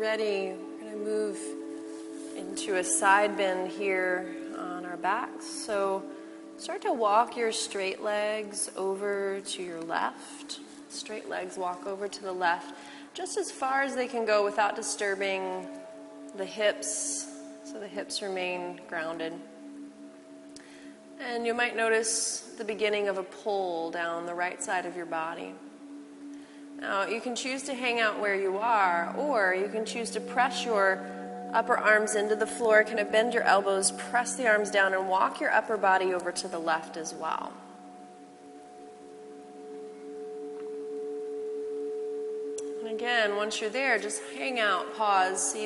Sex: female